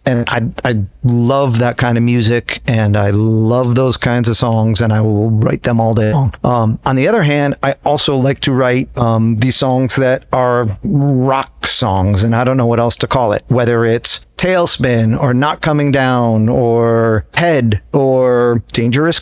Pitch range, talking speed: 115-150 Hz, 185 wpm